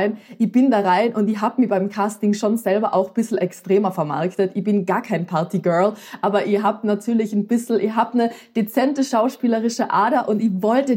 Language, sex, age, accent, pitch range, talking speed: German, female, 20-39, German, 185-225 Hz, 200 wpm